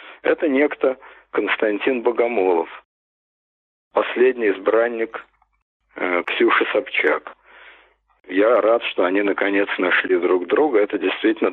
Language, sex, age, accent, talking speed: Russian, male, 50-69, native, 100 wpm